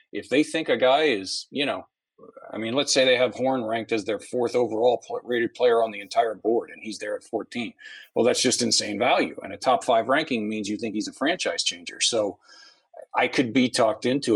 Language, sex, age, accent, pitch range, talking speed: English, male, 40-59, American, 110-170 Hz, 225 wpm